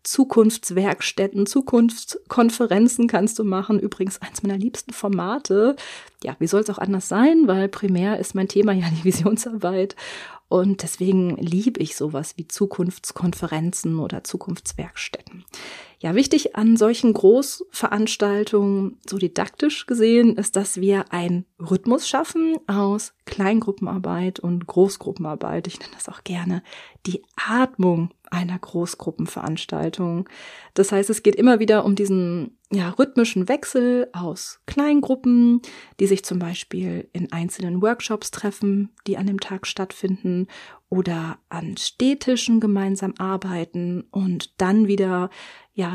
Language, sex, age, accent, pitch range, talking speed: German, female, 30-49, German, 185-230 Hz, 125 wpm